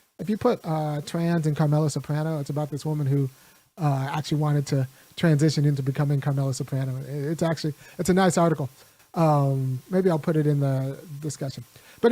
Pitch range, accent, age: 150-190 Hz, American, 30-49